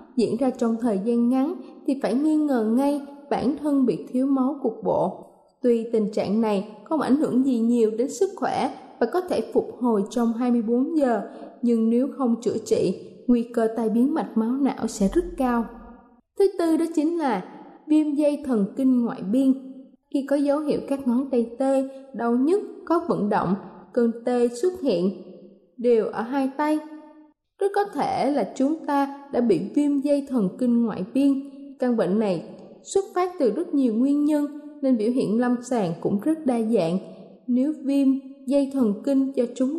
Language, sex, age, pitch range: Thai, female, 20-39, 230-290 Hz